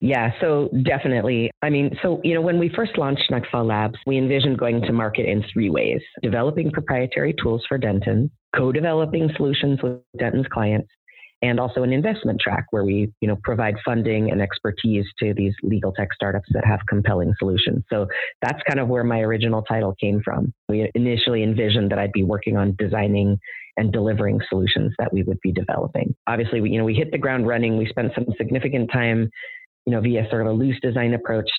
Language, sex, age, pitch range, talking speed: English, female, 30-49, 105-125 Hz, 195 wpm